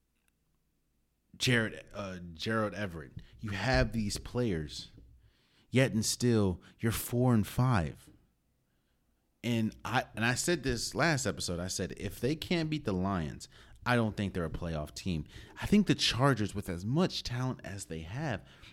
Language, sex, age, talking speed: English, male, 30-49, 155 wpm